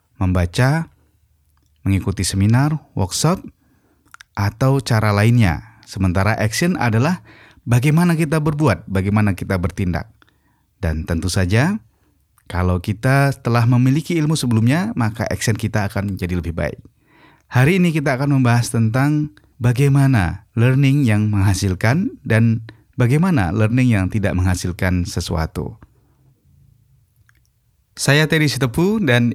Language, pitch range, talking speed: Indonesian, 95-125 Hz, 110 wpm